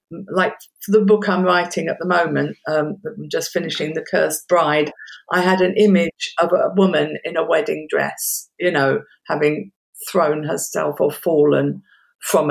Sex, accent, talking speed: female, British, 165 wpm